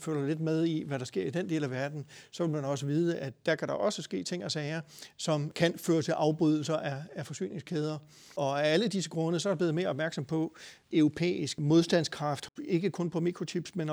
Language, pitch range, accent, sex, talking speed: Danish, 150-170 Hz, native, male, 220 wpm